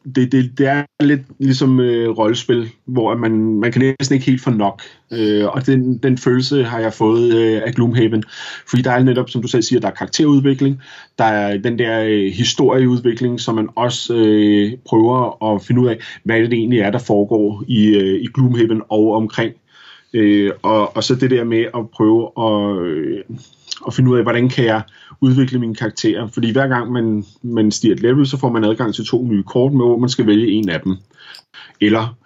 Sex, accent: male, native